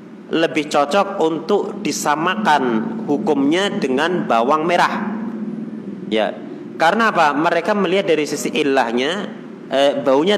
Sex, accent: male, native